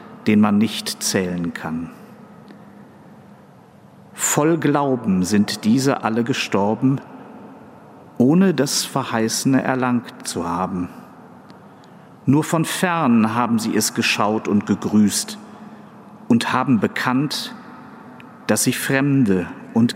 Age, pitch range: 50-69, 115-175 Hz